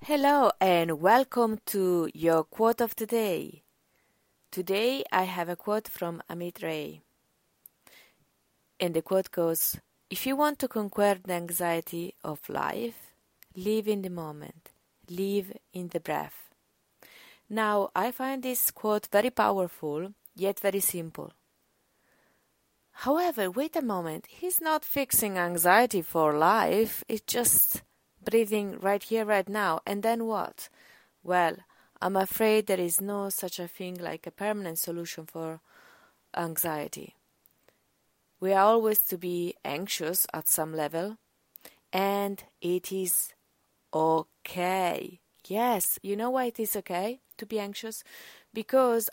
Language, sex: English, female